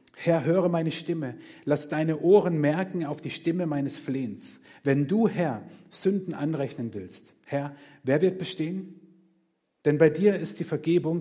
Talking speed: 155 wpm